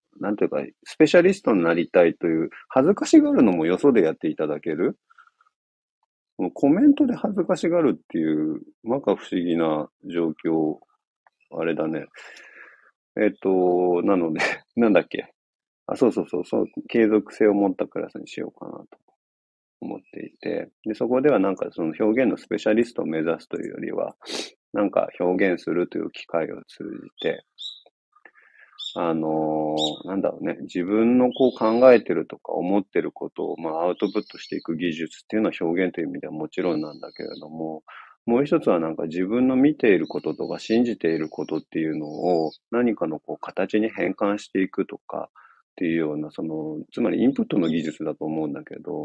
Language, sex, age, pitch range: Japanese, male, 40-59, 80-130 Hz